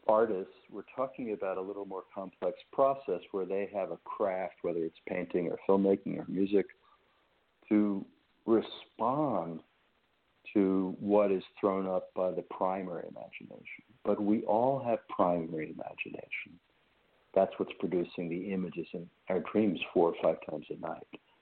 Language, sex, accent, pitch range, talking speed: English, male, American, 95-110 Hz, 145 wpm